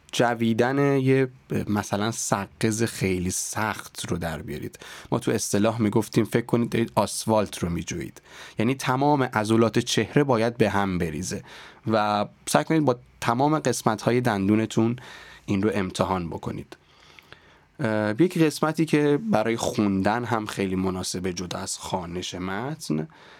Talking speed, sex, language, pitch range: 135 wpm, male, Persian, 105-140 Hz